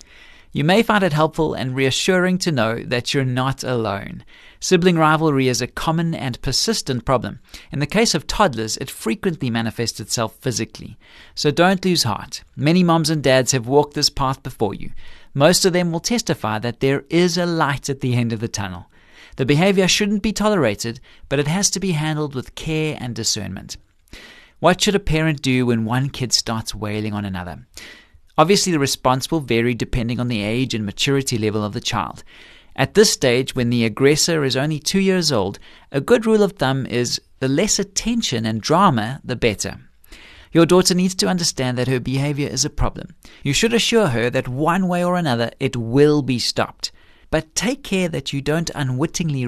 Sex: male